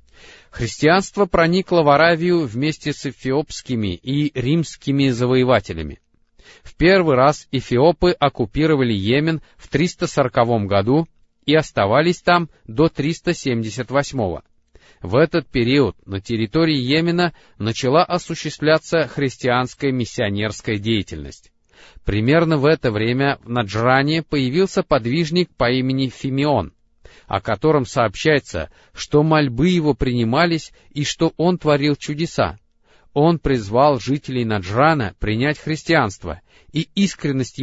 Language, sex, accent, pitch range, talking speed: Russian, male, native, 120-160 Hz, 105 wpm